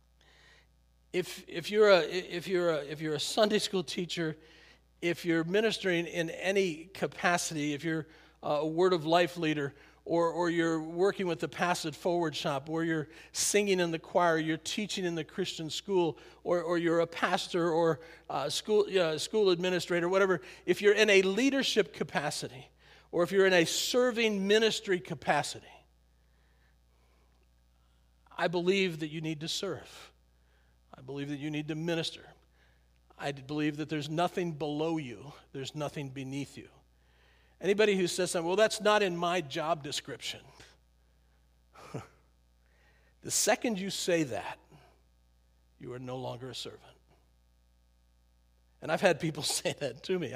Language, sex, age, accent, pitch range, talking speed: English, male, 50-69, American, 125-185 Hz, 155 wpm